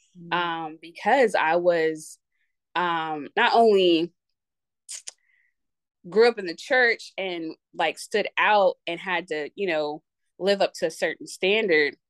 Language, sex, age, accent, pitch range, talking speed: English, female, 20-39, American, 160-185 Hz, 135 wpm